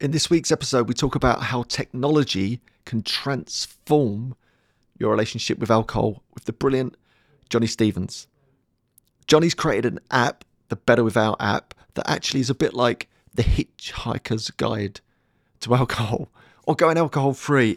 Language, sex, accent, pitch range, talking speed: English, male, British, 115-140 Hz, 140 wpm